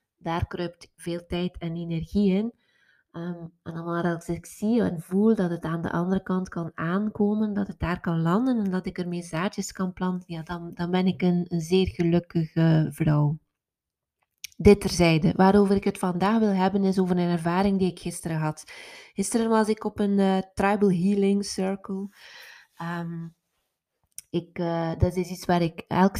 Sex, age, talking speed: female, 20-39, 180 wpm